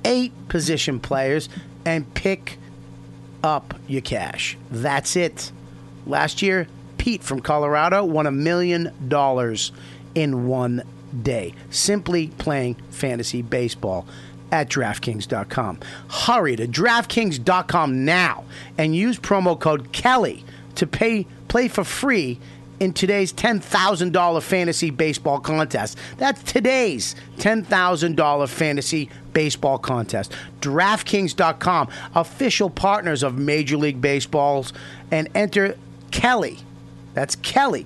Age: 40-59